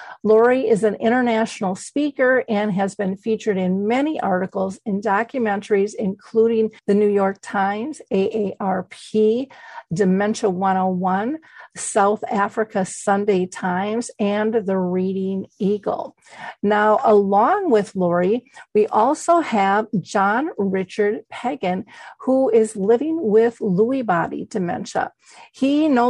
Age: 50-69